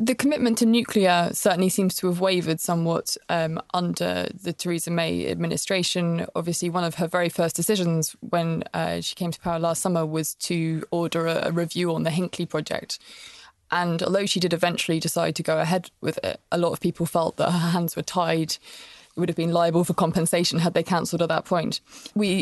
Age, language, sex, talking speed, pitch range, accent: 20-39, English, female, 205 wpm, 170-190 Hz, British